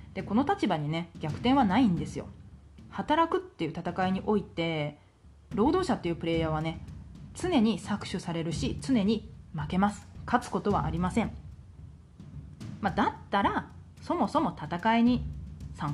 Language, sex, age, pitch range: Japanese, female, 30-49, 165-235 Hz